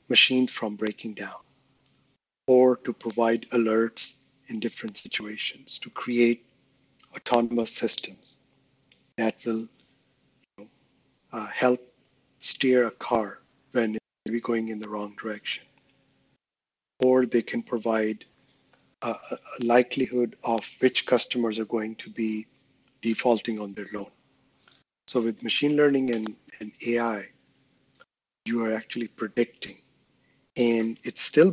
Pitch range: 110-125 Hz